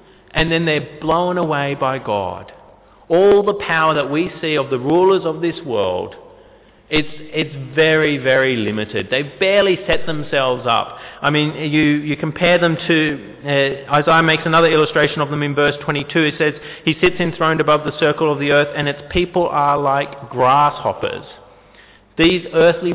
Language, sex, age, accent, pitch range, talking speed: English, male, 30-49, Australian, 135-175 Hz, 170 wpm